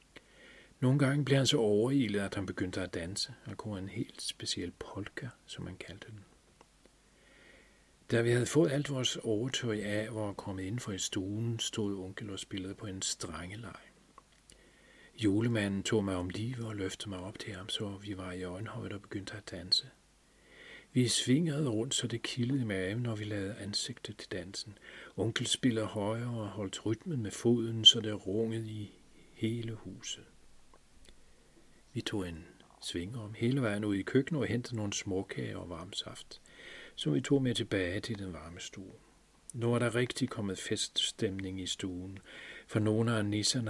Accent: native